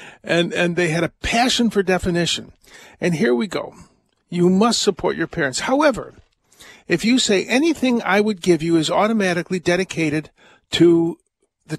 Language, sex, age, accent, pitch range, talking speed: English, male, 50-69, American, 145-200 Hz, 160 wpm